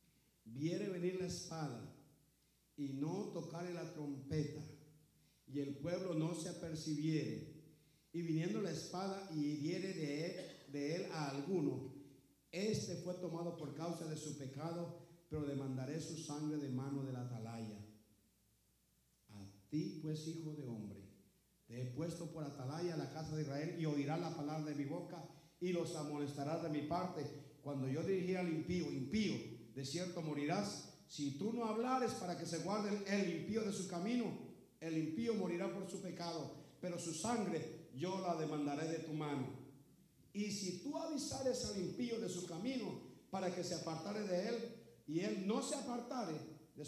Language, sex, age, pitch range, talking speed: English, male, 50-69, 140-175 Hz, 170 wpm